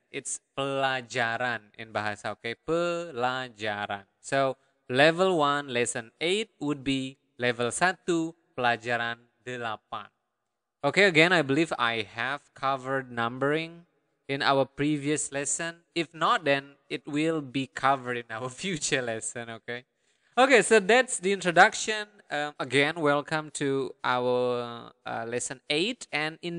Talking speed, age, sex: 125 wpm, 20-39, male